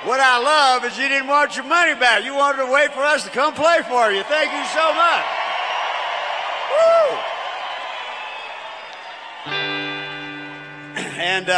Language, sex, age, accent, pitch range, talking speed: English, male, 50-69, American, 145-230 Hz, 140 wpm